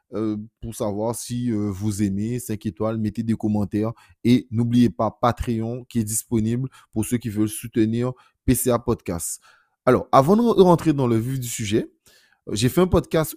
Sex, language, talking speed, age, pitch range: male, French, 180 wpm, 30-49, 110-140 Hz